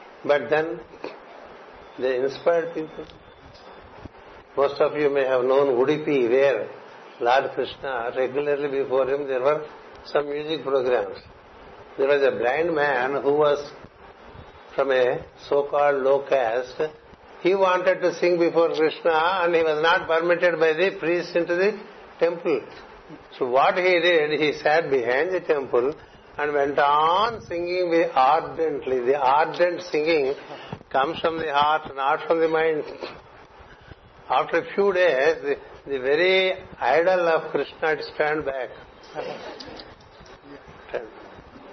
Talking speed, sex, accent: 135 wpm, male, native